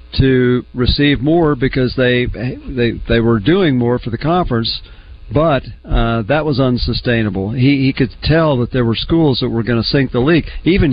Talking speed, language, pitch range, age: 185 wpm, English, 115-145 Hz, 50-69